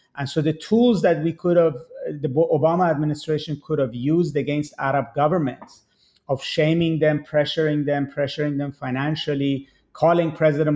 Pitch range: 140-155 Hz